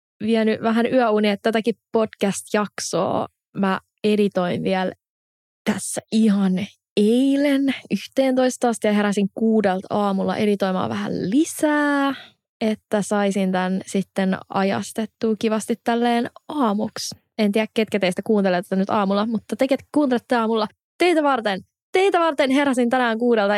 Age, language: 20-39, Finnish